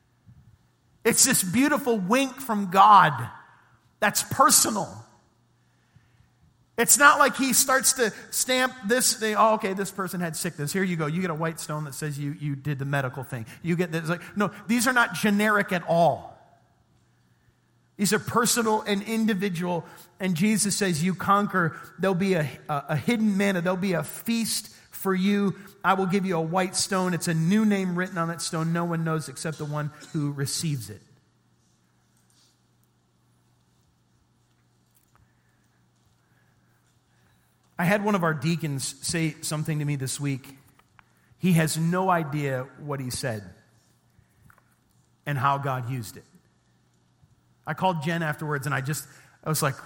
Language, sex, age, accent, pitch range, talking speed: English, male, 40-59, American, 140-200 Hz, 160 wpm